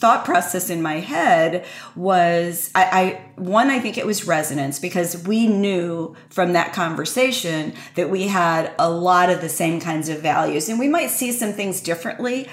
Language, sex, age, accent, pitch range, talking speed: English, female, 40-59, American, 170-205 Hz, 180 wpm